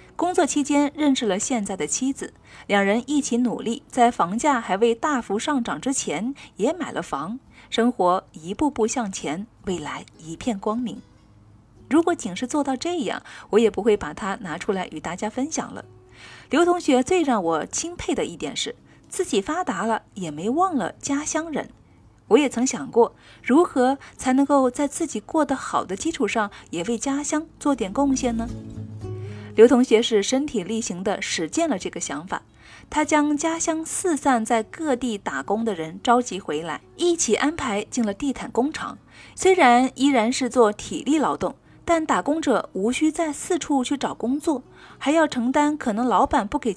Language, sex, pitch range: Chinese, female, 215-290 Hz